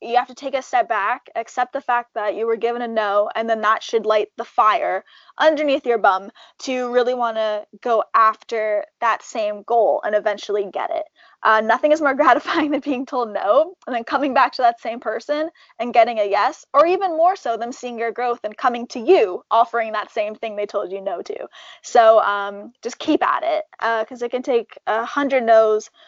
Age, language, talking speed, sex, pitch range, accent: 10-29, English, 220 wpm, female, 215-285 Hz, American